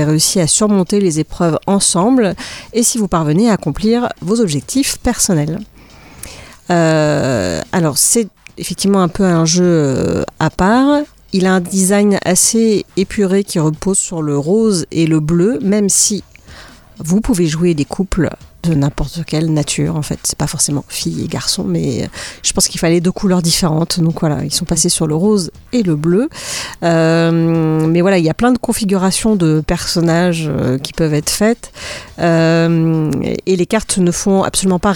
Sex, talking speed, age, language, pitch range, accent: female, 170 wpm, 40-59, French, 160-200 Hz, French